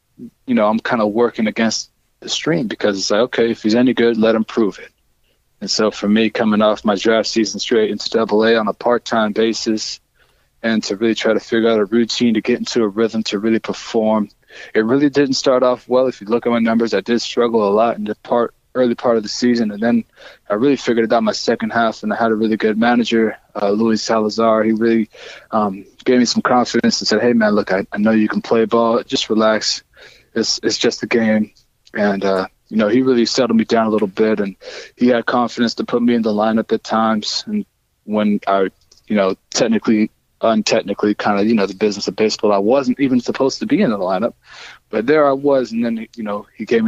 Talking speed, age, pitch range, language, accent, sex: 235 wpm, 20-39, 110-120 Hz, English, American, male